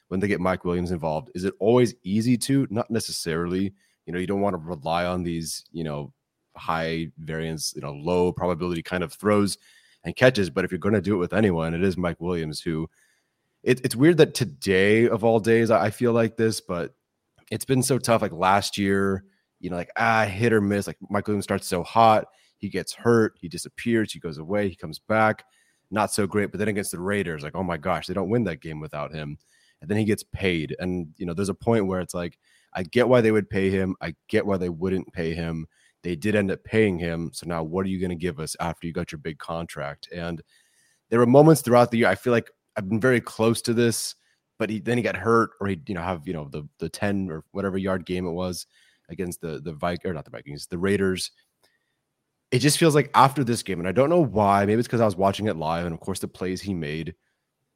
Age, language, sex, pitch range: 30-49, English, male, 85-110 Hz